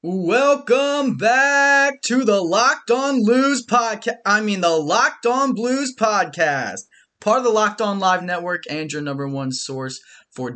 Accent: American